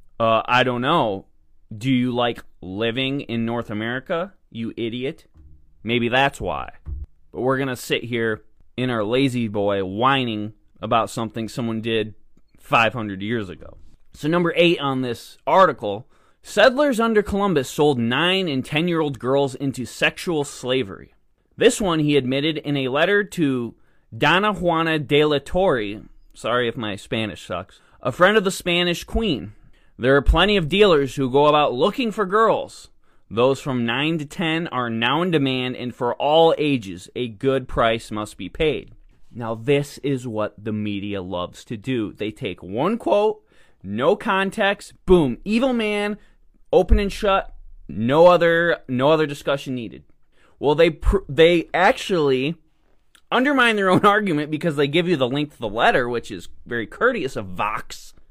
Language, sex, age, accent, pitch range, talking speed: English, male, 20-39, American, 115-165 Hz, 160 wpm